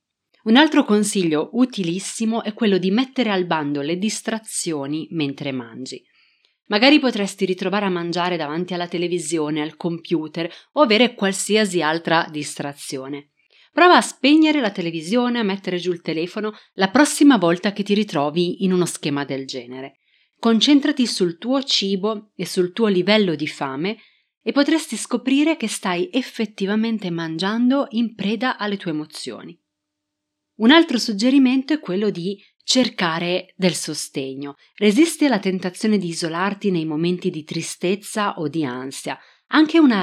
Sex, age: female, 30-49